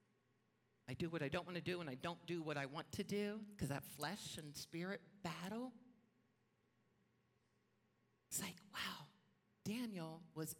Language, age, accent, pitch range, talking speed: English, 50-69, American, 135-190 Hz, 160 wpm